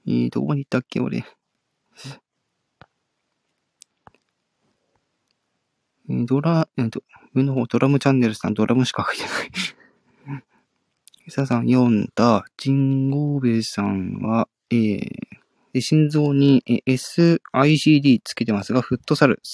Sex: male